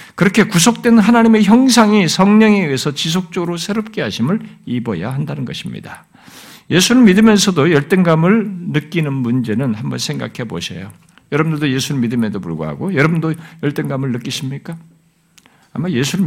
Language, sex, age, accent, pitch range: Korean, male, 50-69, native, 145-200 Hz